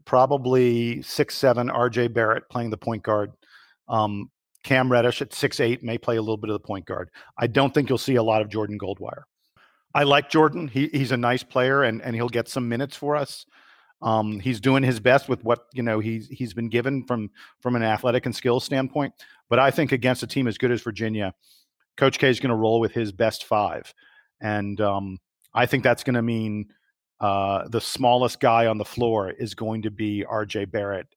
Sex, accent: male, American